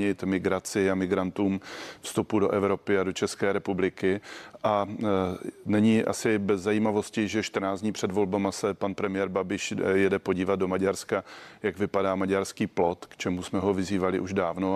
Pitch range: 95-105 Hz